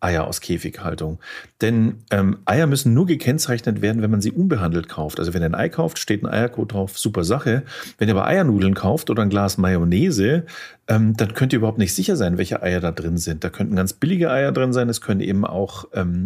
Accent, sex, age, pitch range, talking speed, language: German, male, 40-59, 95-120 Hz, 225 wpm, German